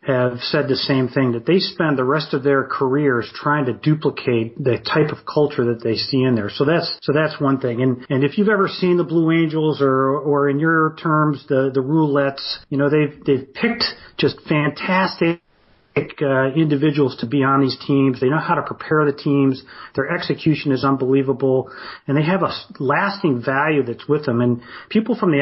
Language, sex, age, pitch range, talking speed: English, male, 40-59, 130-160 Hz, 200 wpm